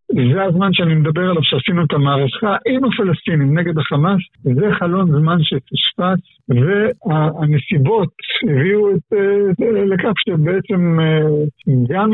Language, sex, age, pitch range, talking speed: Hebrew, male, 60-79, 145-190 Hz, 115 wpm